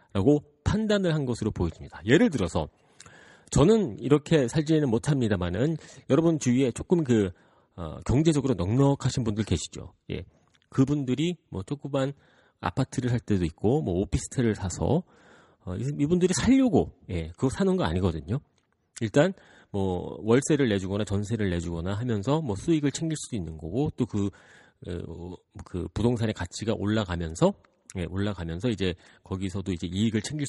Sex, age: male, 40-59